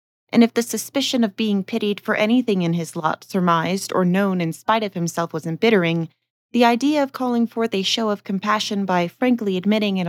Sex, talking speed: female, 200 wpm